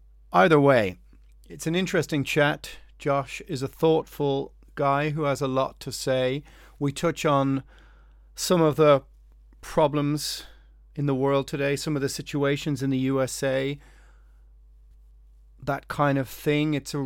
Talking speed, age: 145 wpm, 30-49